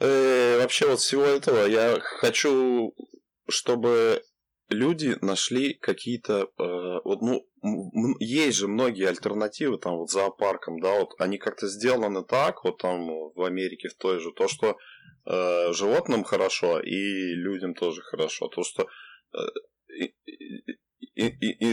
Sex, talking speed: male, 135 wpm